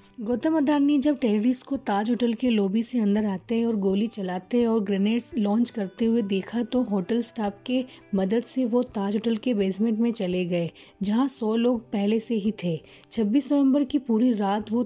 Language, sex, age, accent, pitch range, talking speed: Hindi, female, 30-49, native, 200-240 Hz, 200 wpm